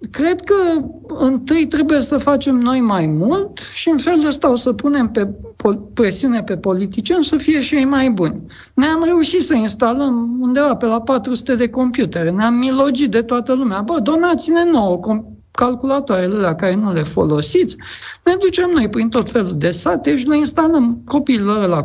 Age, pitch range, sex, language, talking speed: 50-69, 210-310 Hz, male, Romanian, 175 wpm